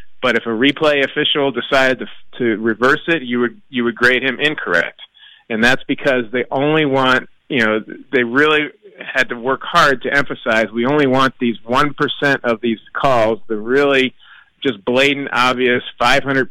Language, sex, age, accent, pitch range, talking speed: English, male, 40-59, American, 115-135 Hz, 170 wpm